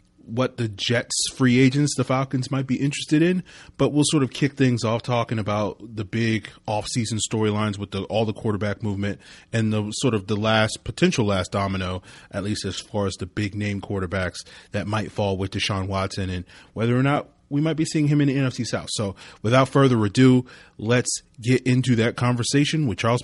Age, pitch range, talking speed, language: 30-49, 105-135 Hz, 205 wpm, English